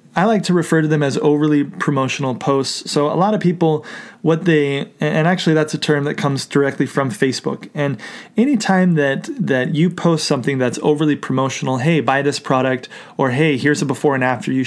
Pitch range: 135-165 Hz